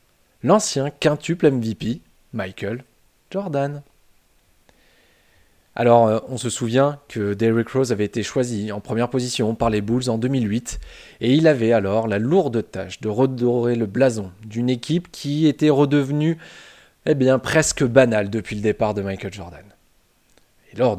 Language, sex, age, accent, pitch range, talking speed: French, male, 20-39, French, 105-135 Hz, 145 wpm